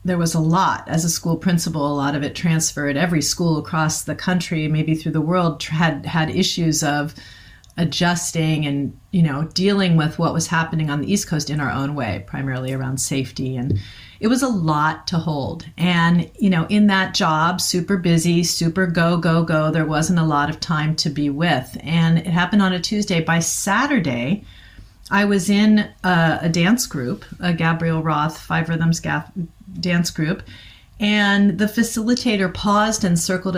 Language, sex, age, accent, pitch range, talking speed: English, female, 40-59, American, 150-185 Hz, 185 wpm